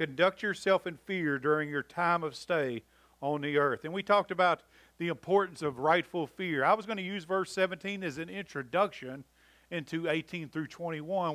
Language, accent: English, American